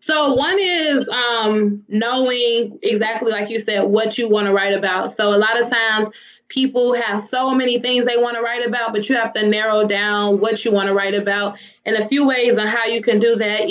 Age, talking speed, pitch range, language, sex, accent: 20-39, 230 wpm, 210-235 Hz, English, female, American